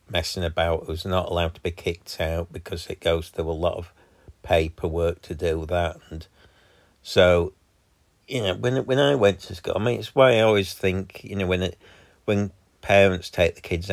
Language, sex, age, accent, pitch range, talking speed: English, male, 50-69, British, 85-120 Hz, 200 wpm